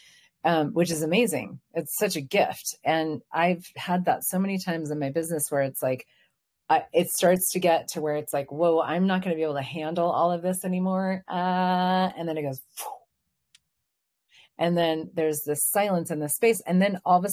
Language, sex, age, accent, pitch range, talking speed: English, female, 30-49, American, 150-185 Hz, 215 wpm